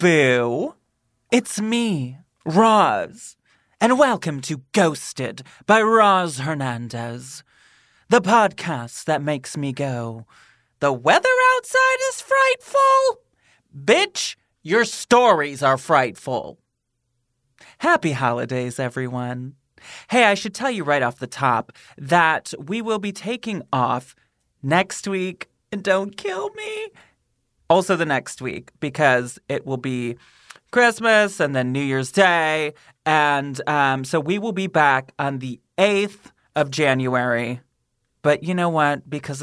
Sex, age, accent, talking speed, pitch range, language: male, 30-49, American, 125 wpm, 130-200 Hz, English